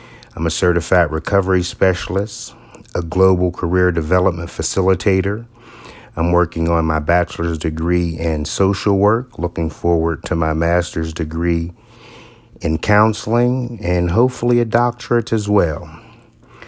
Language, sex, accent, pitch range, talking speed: English, male, American, 85-115 Hz, 120 wpm